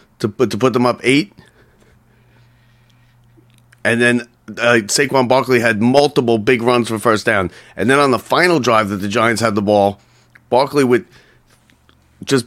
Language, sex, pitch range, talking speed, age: English, male, 110-130 Hz, 165 wpm, 30-49